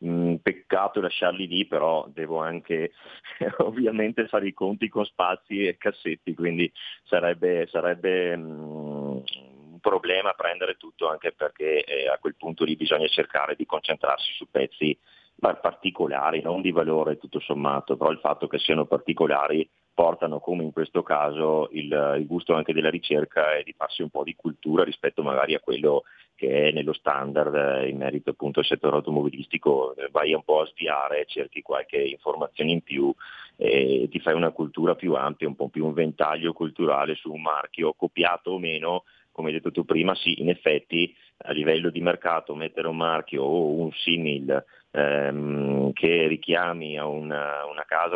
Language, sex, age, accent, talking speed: Italian, male, 30-49, native, 160 wpm